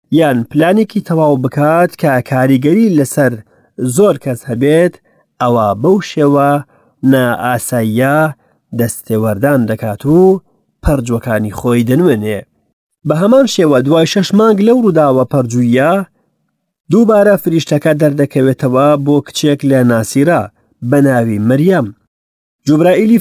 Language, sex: English, male